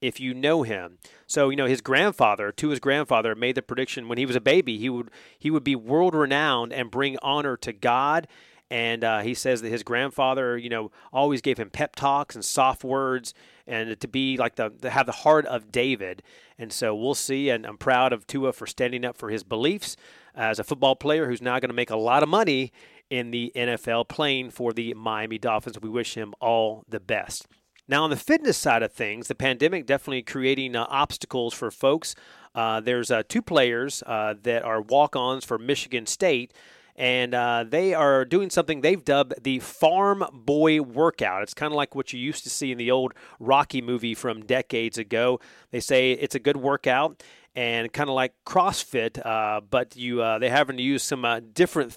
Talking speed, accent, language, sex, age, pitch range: 205 wpm, American, English, male, 30-49, 120-145 Hz